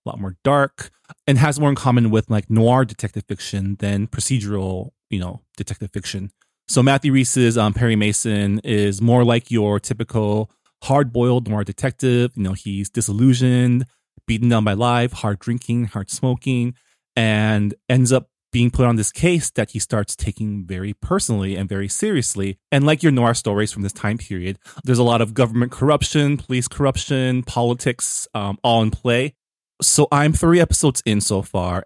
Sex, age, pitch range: male, 30-49, 100-130 Hz